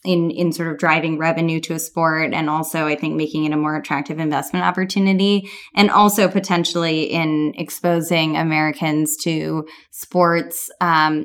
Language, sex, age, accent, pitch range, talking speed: English, female, 10-29, American, 160-200 Hz, 155 wpm